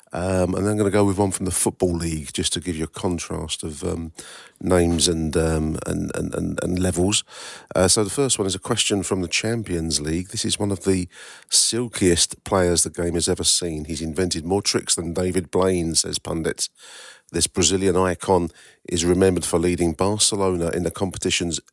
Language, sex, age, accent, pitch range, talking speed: English, male, 40-59, British, 80-90 Hz, 200 wpm